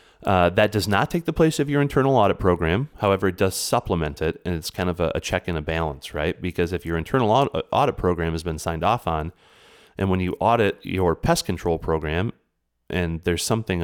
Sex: male